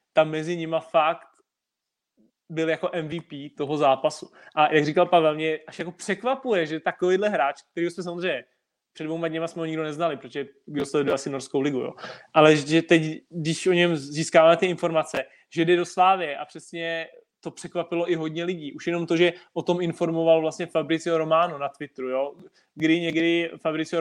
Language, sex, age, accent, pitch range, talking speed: Czech, male, 20-39, native, 150-170 Hz, 185 wpm